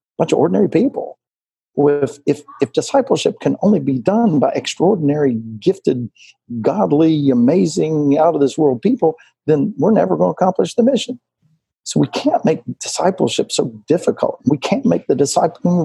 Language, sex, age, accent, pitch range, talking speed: English, male, 50-69, American, 135-175 Hz, 150 wpm